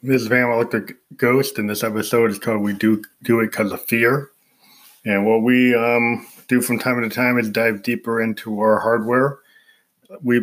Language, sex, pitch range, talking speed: English, male, 100-115 Hz, 190 wpm